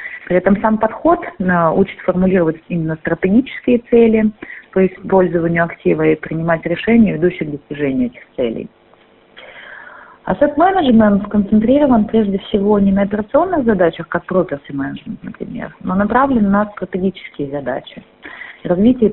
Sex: female